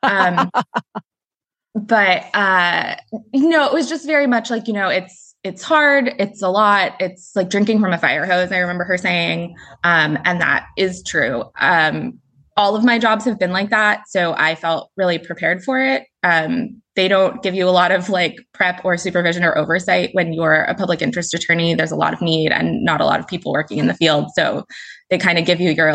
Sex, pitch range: female, 170-220 Hz